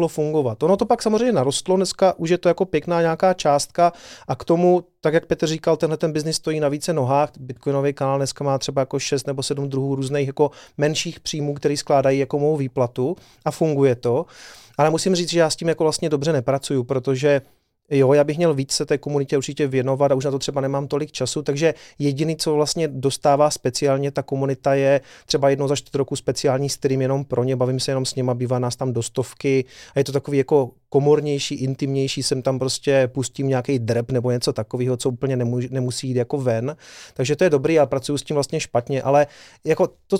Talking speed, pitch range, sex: 215 wpm, 130-155 Hz, male